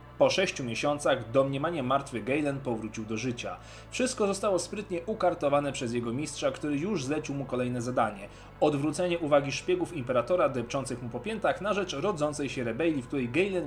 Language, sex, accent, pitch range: Polish, male, native, 120-165 Hz